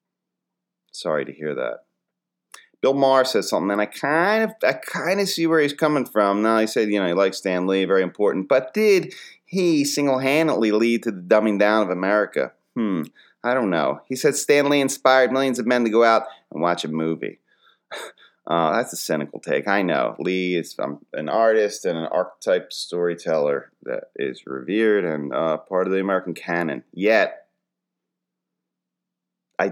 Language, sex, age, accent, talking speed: English, male, 30-49, American, 180 wpm